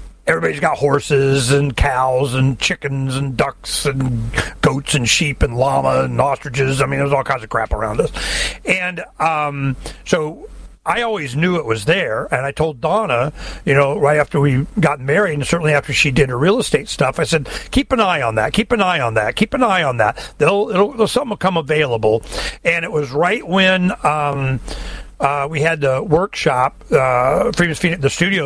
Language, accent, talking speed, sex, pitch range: English, American, 195 wpm, male, 135-170 Hz